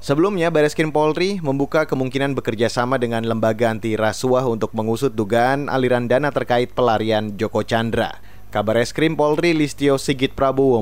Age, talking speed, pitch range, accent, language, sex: 30-49, 140 wpm, 120-150 Hz, native, Indonesian, male